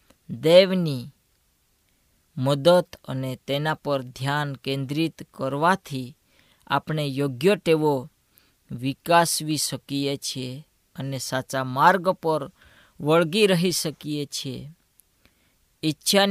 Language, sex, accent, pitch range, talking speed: Gujarati, female, native, 135-170 Hz, 60 wpm